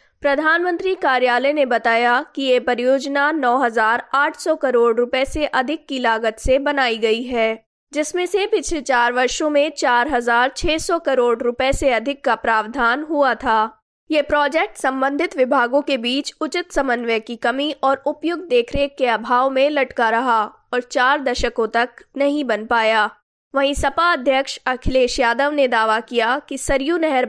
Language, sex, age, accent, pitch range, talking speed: Hindi, female, 20-39, native, 235-285 Hz, 150 wpm